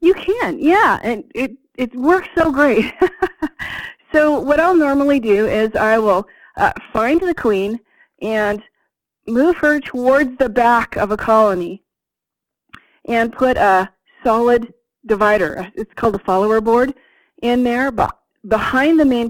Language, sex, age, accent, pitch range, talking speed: English, female, 30-49, American, 205-270 Hz, 140 wpm